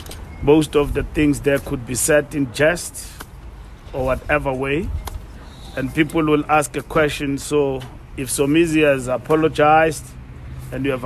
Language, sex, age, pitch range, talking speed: English, male, 50-69, 125-150 Hz, 145 wpm